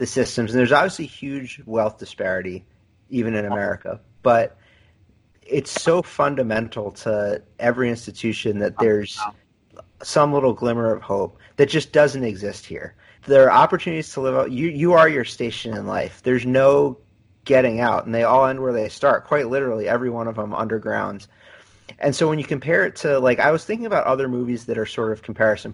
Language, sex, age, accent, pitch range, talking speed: English, male, 30-49, American, 110-125 Hz, 185 wpm